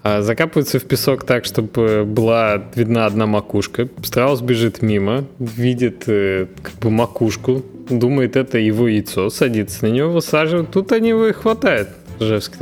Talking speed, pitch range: 135 wpm, 110-150 Hz